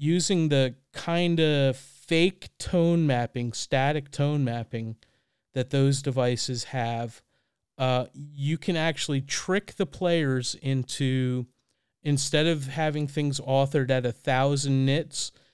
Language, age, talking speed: English, 40-59, 115 wpm